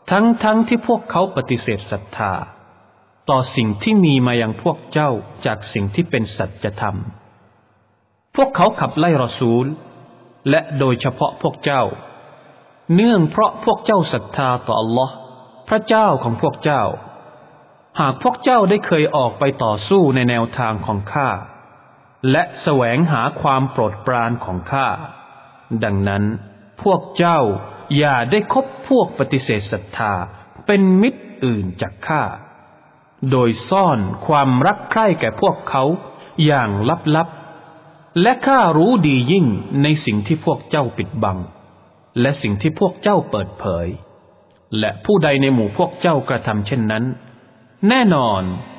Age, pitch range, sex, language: 20-39, 110-170 Hz, male, English